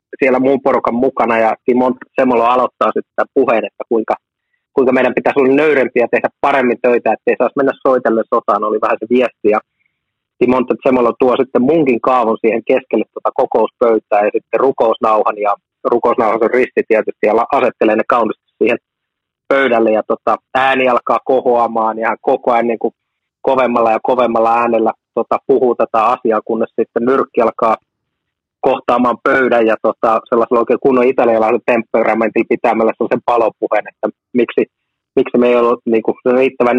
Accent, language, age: native, Finnish, 30-49